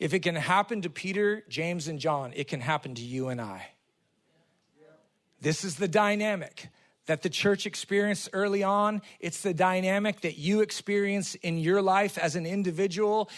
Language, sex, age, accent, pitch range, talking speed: English, male, 40-59, American, 160-220 Hz, 170 wpm